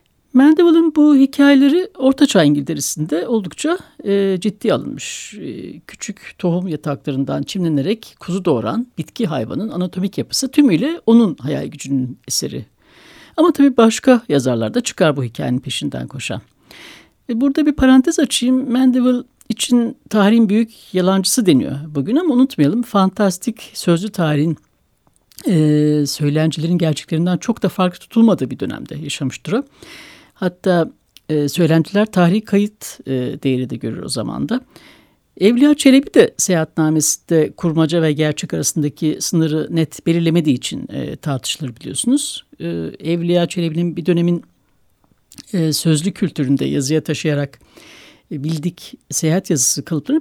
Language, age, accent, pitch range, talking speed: Turkish, 60-79, native, 155-240 Hz, 125 wpm